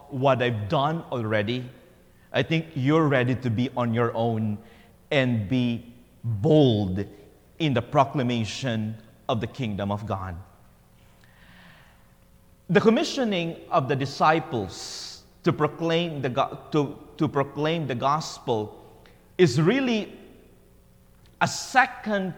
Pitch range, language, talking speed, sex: 115-170 Hz, English, 110 wpm, male